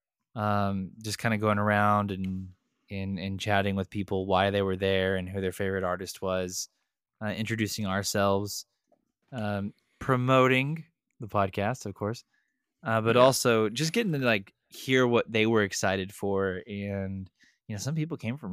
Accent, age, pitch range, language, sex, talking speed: American, 20-39, 100-120 Hz, English, male, 165 wpm